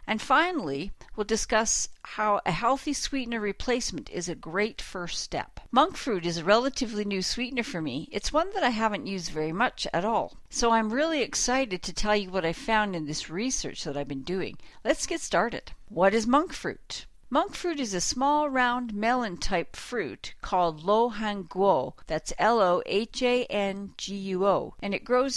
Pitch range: 175-245 Hz